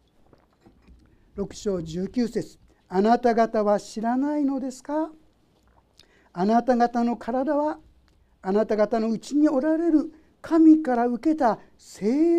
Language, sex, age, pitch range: Japanese, male, 50-69, 220-335 Hz